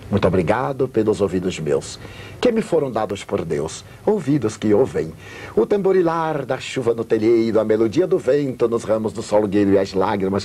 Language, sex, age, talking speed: Portuguese, male, 60-79, 180 wpm